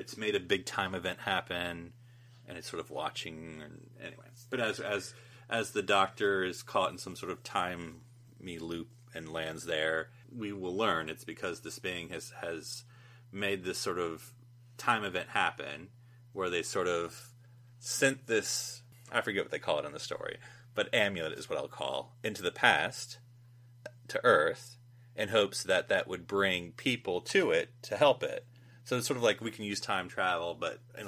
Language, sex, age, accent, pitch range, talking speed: English, male, 30-49, American, 95-125 Hz, 190 wpm